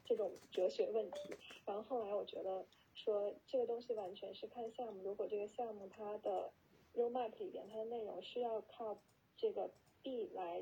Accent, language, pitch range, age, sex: native, Chinese, 210-260 Hz, 10-29, female